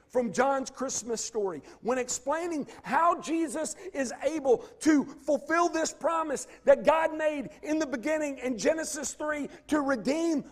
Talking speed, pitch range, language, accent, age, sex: 145 wpm, 260-325 Hz, English, American, 50-69, male